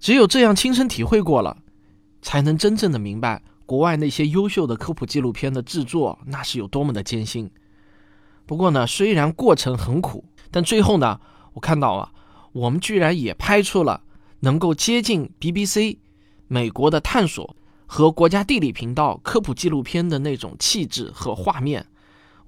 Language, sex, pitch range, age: Chinese, male, 110-165 Hz, 20-39